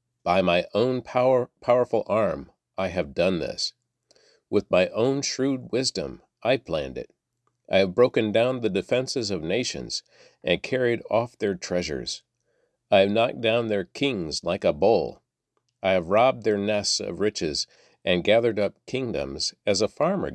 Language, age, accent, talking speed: English, 50-69, American, 160 wpm